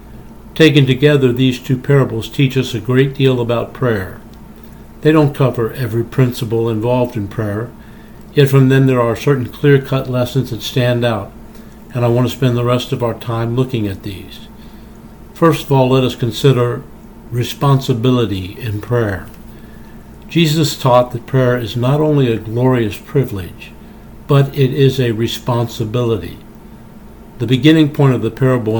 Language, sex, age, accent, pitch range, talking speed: English, male, 60-79, American, 115-135 Hz, 155 wpm